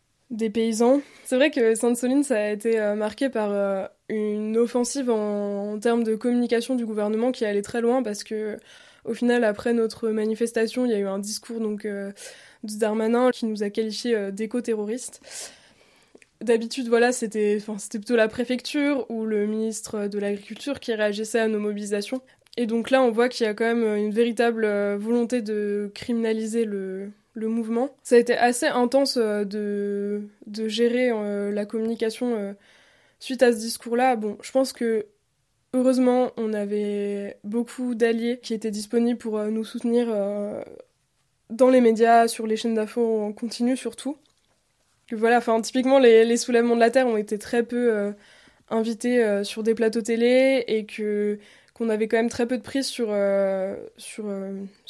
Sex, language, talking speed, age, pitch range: female, French, 180 wpm, 20-39, 210-240 Hz